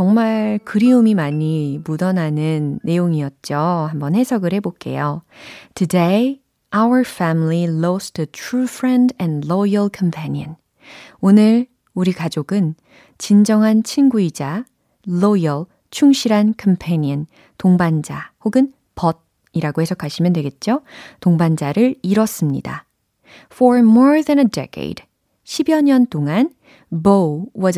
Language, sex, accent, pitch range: Korean, female, native, 165-220 Hz